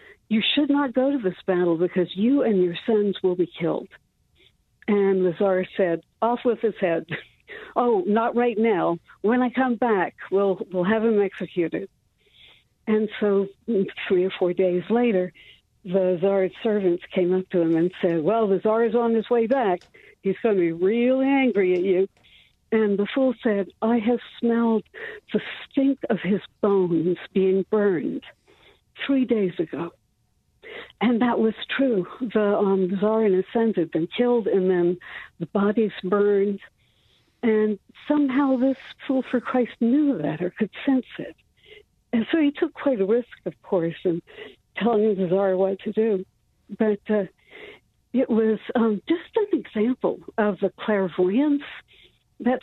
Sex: female